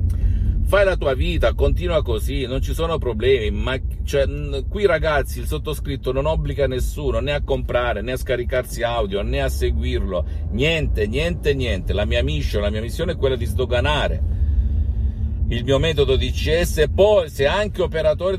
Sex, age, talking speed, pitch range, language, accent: male, 50-69, 165 wpm, 80-130 Hz, Italian, native